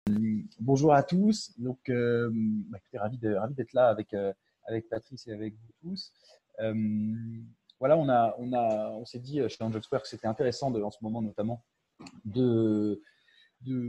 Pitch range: 95-115 Hz